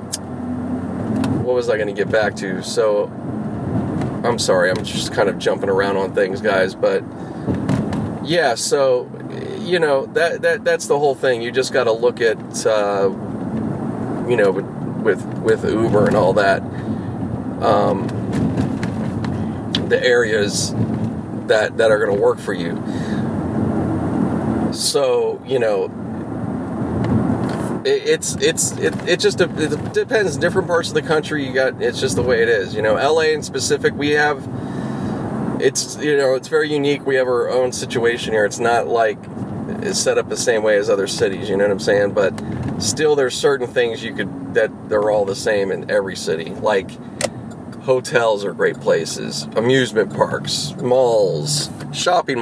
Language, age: English, 30-49